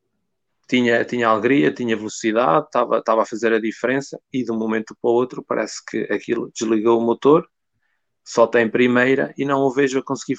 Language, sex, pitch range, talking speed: English, male, 110-135 Hz, 185 wpm